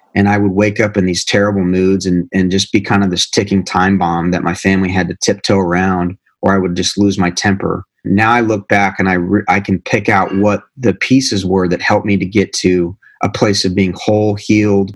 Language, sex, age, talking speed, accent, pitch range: English, male, 30-49, 240 wpm, American, 95-105 Hz